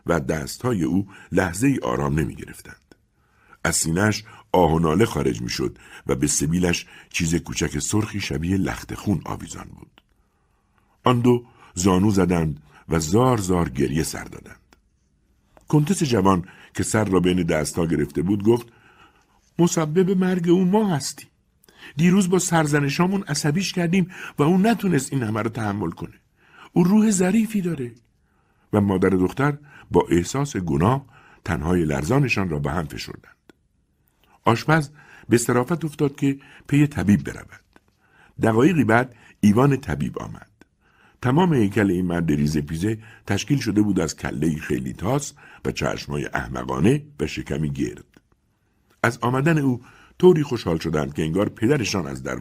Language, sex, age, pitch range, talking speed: Persian, male, 60-79, 90-145 Hz, 135 wpm